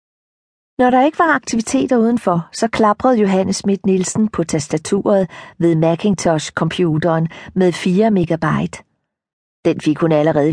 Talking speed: 125 wpm